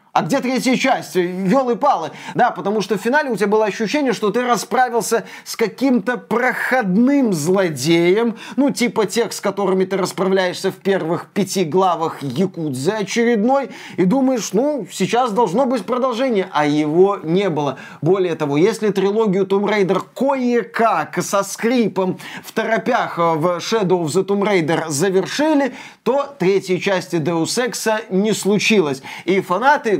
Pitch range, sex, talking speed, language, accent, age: 185-220 Hz, male, 145 wpm, Russian, native, 30-49